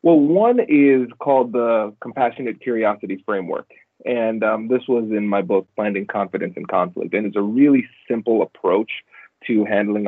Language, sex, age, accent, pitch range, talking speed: English, male, 30-49, American, 100-120 Hz, 160 wpm